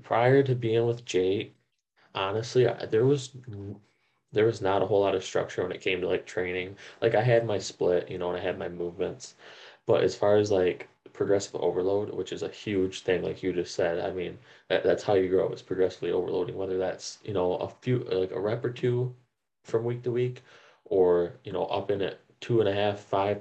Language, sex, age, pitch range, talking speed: English, male, 20-39, 95-115 Hz, 225 wpm